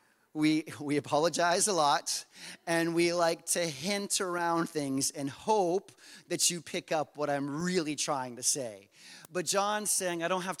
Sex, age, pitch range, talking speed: male, 30-49, 150-185 Hz, 170 wpm